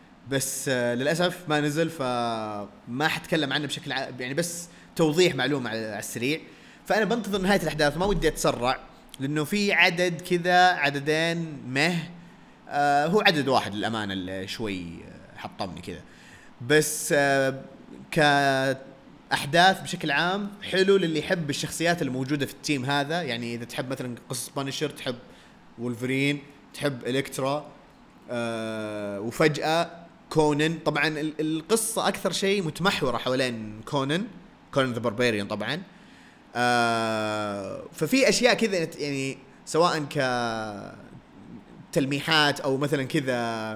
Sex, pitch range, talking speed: male, 120-160 Hz, 110 wpm